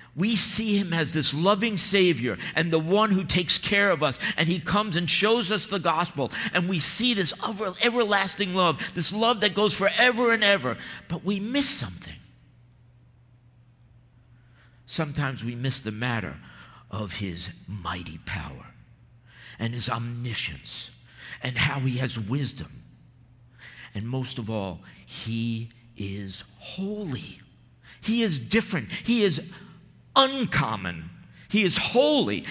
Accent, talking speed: American, 135 wpm